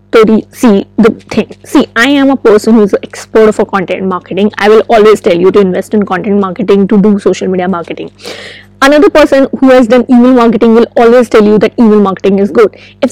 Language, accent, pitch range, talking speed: English, Indian, 215-255 Hz, 215 wpm